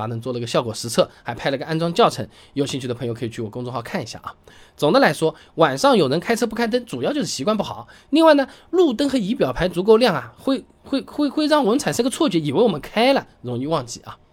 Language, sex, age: Chinese, male, 20-39